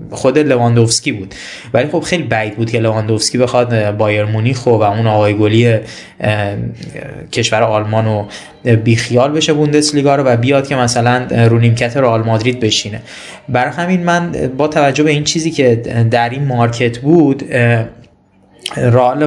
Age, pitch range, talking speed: 20-39, 115-145 Hz, 145 wpm